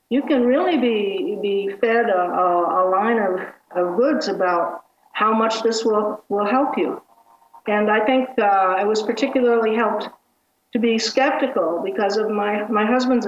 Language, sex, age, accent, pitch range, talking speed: English, female, 50-69, American, 195-235 Hz, 165 wpm